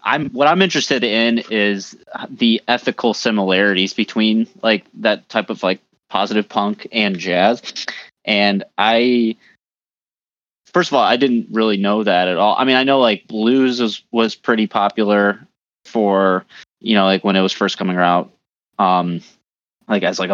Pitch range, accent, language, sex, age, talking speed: 95-115 Hz, American, English, male, 20-39, 160 wpm